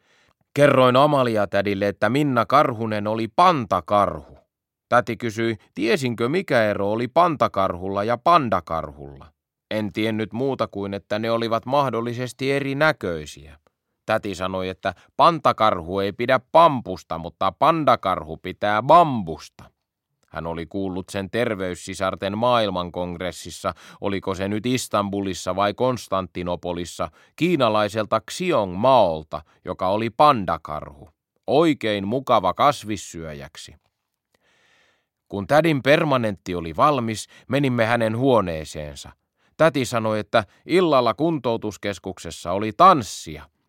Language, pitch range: Finnish, 95-120 Hz